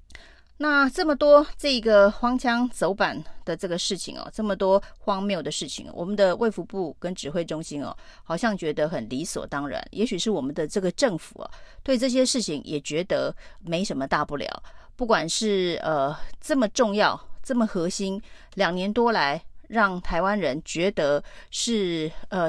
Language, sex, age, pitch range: Chinese, female, 30-49, 170-225 Hz